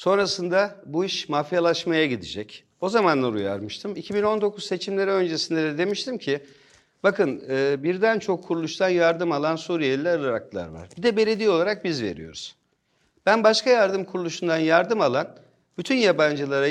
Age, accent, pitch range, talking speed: 50-69, native, 145-205 Hz, 135 wpm